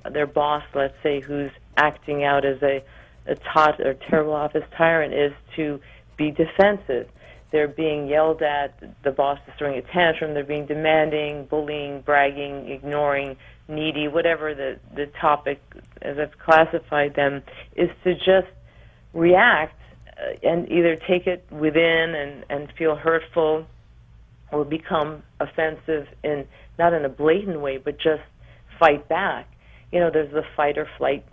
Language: English